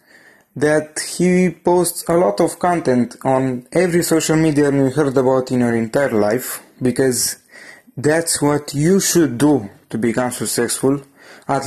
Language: English